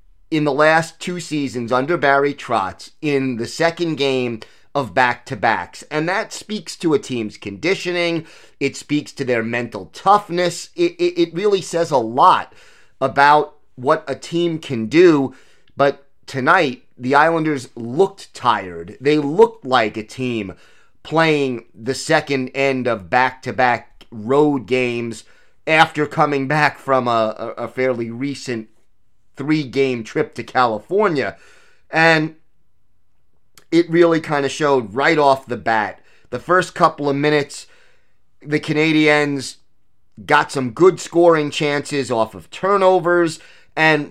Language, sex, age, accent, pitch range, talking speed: English, male, 30-49, American, 125-160 Hz, 130 wpm